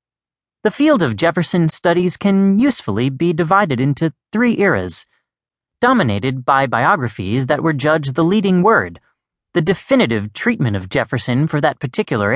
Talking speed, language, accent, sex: 140 wpm, English, American, male